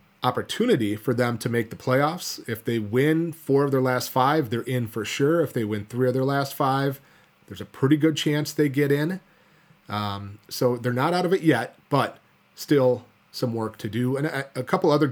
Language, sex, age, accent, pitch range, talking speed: English, male, 30-49, American, 120-150 Hz, 215 wpm